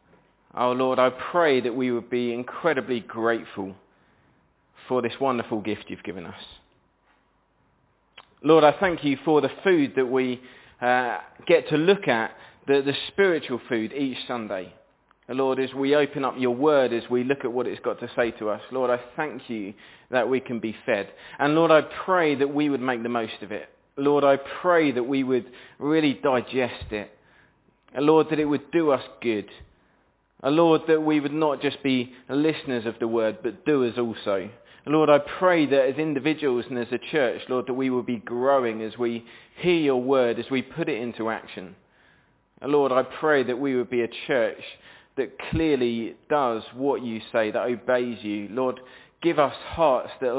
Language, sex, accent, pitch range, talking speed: English, male, British, 120-145 Hz, 185 wpm